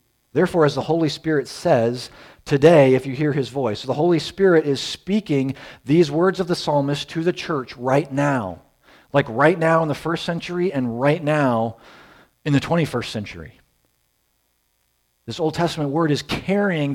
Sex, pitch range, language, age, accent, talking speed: male, 110-165 Hz, English, 40-59, American, 165 wpm